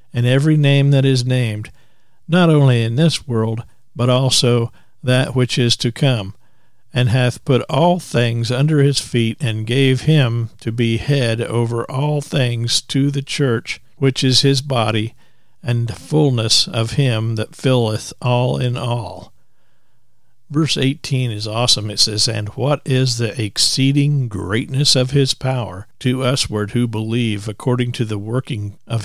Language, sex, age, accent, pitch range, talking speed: English, male, 50-69, American, 115-135 Hz, 155 wpm